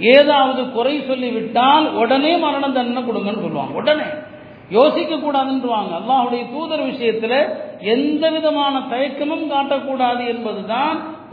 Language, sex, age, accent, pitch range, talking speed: Tamil, male, 40-59, native, 220-270 Hz, 90 wpm